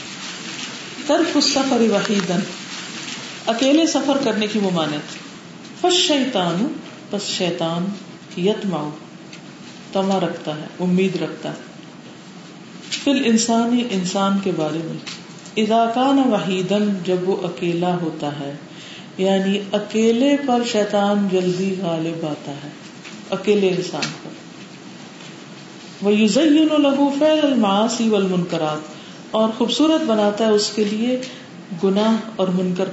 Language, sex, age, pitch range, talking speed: Urdu, female, 40-59, 180-245 Hz, 65 wpm